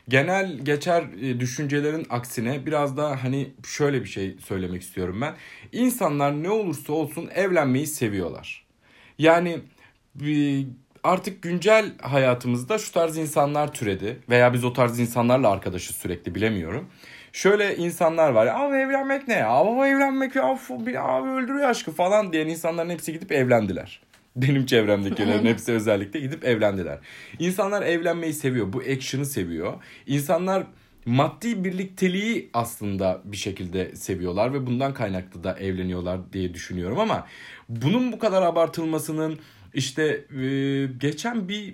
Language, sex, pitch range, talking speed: Turkish, male, 115-165 Hz, 125 wpm